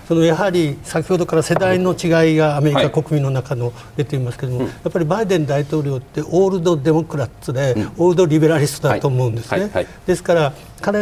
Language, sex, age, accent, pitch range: Japanese, male, 60-79, native, 140-175 Hz